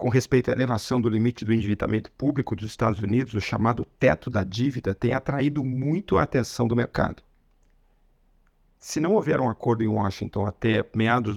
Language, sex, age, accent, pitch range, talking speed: Portuguese, male, 50-69, Brazilian, 110-140 Hz, 175 wpm